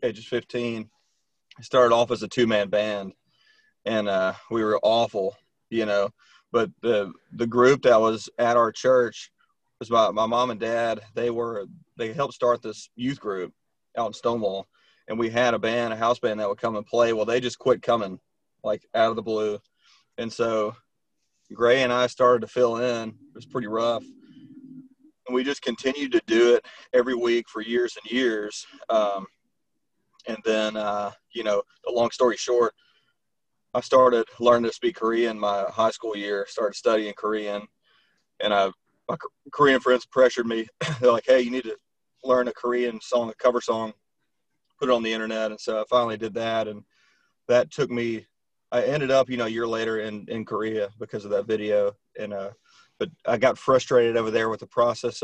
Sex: male